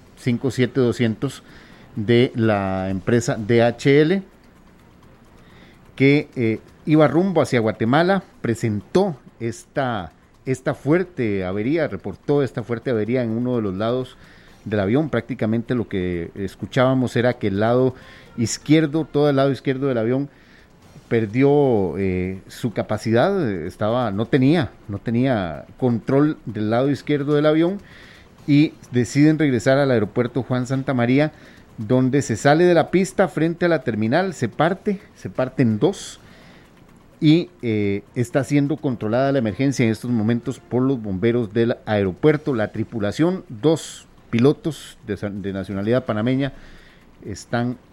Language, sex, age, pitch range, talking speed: Spanish, male, 40-59, 110-145 Hz, 130 wpm